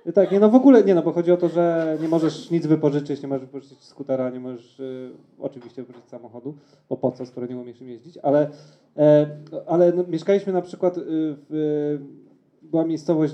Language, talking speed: Polish, 200 wpm